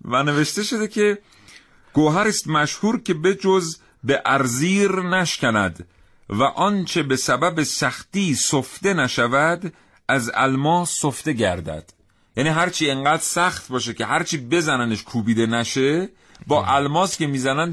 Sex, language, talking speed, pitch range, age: male, Persian, 130 wpm, 110-175 Hz, 40-59